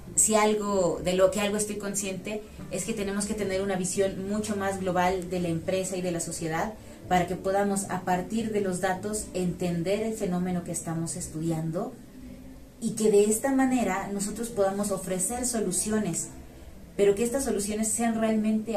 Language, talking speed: Spanish, 175 wpm